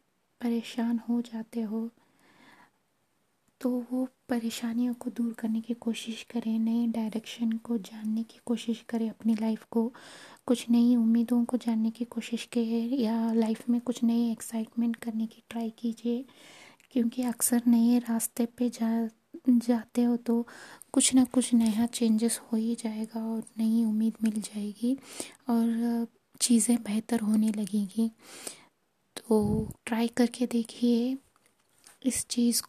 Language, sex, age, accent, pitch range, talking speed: Hindi, female, 20-39, native, 225-240 Hz, 135 wpm